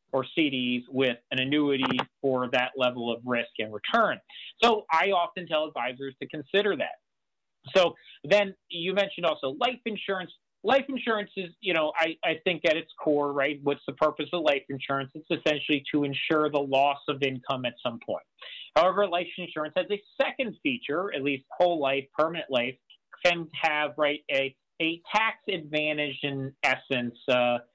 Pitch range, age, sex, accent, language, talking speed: 130-165 Hz, 40-59, male, American, English, 170 wpm